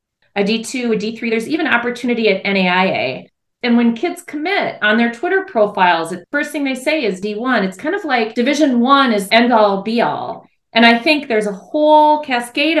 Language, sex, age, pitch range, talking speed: English, female, 40-59, 195-260 Hz, 195 wpm